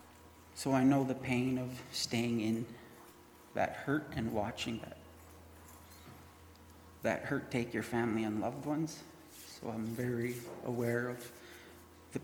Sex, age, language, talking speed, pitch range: male, 30-49, English, 130 wpm, 90-120 Hz